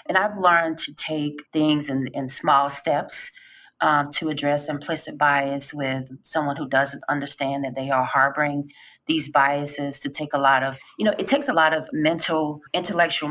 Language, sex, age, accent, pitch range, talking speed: English, female, 30-49, American, 130-150 Hz, 180 wpm